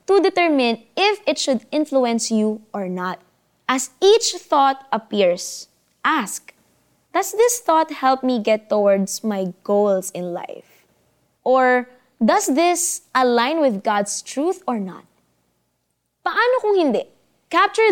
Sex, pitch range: female, 215-315 Hz